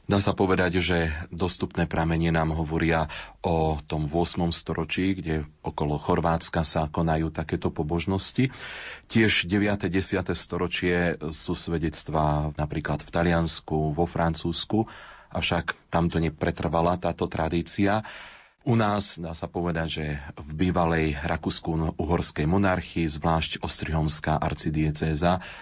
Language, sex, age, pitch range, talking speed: Slovak, male, 30-49, 80-90 Hz, 115 wpm